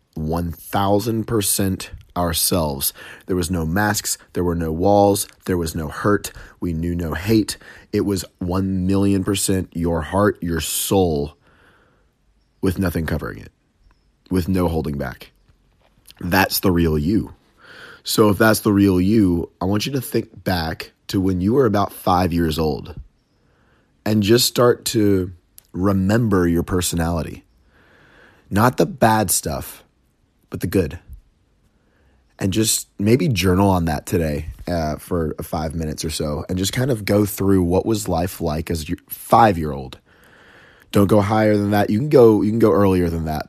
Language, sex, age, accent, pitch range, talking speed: English, male, 30-49, American, 85-105 Hz, 150 wpm